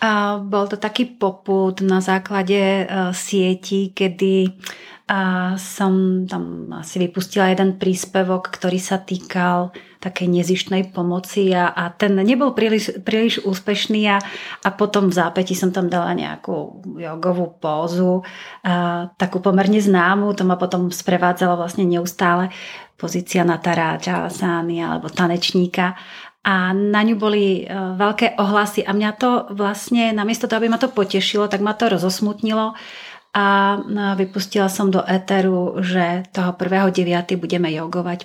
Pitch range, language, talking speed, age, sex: 180-200 Hz, Czech, 130 wpm, 30-49, female